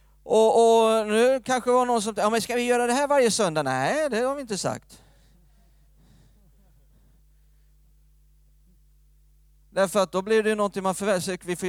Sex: male